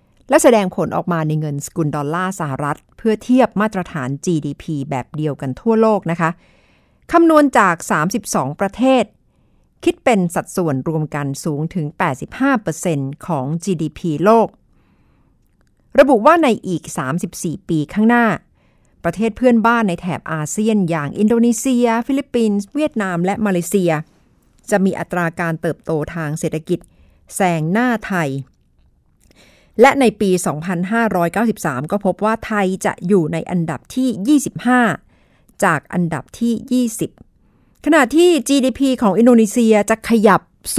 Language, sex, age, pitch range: Thai, female, 60-79, 160-230 Hz